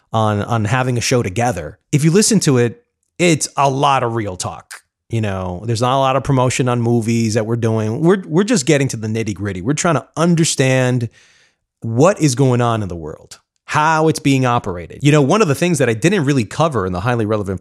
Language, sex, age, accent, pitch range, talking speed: English, male, 30-49, American, 110-145 Hz, 230 wpm